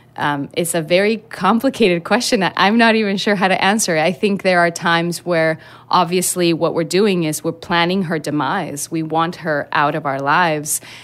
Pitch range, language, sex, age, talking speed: 160-190 Hz, English, female, 30-49, 195 wpm